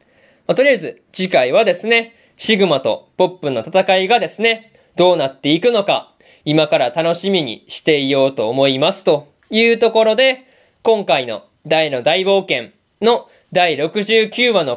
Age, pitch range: 20-39, 160-225 Hz